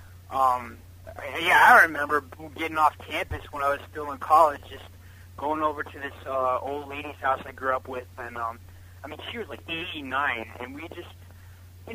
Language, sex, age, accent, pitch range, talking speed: English, male, 30-49, American, 90-140 Hz, 190 wpm